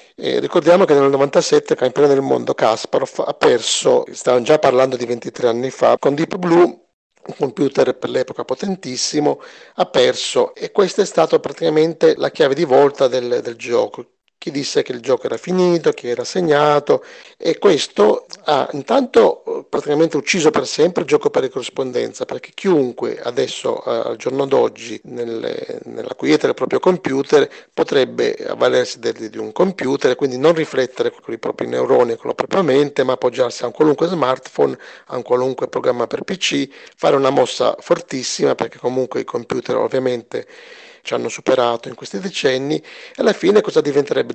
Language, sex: Italian, male